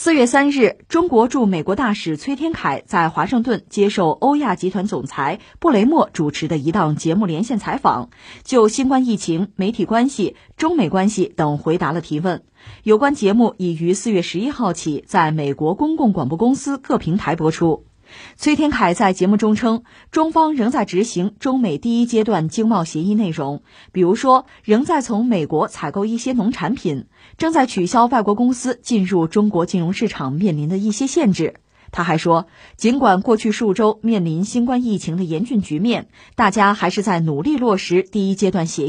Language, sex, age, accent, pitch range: Chinese, female, 20-39, native, 170-235 Hz